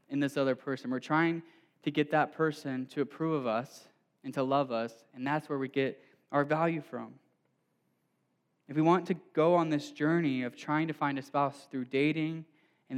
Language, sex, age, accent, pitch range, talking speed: English, male, 10-29, American, 135-170 Hz, 200 wpm